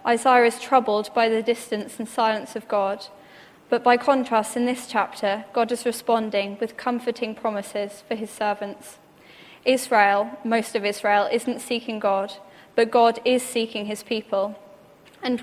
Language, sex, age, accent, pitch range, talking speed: English, female, 10-29, British, 210-245 Hz, 150 wpm